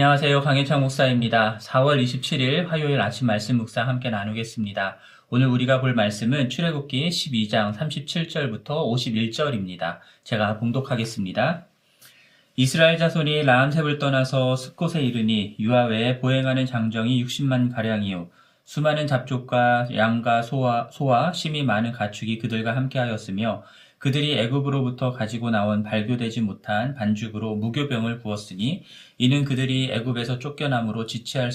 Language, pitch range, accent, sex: Korean, 110-130 Hz, native, male